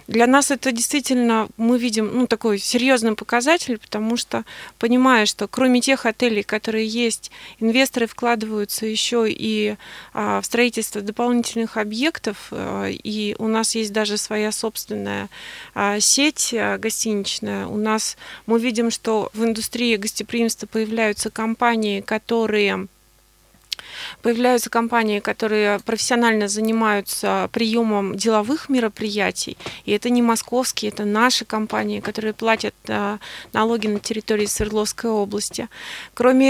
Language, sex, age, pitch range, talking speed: Russian, female, 20-39, 215-240 Hz, 120 wpm